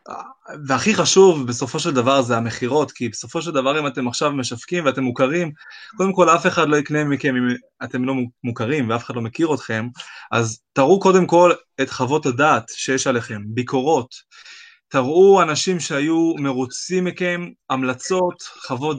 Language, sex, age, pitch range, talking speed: Hebrew, male, 20-39, 130-170 Hz, 160 wpm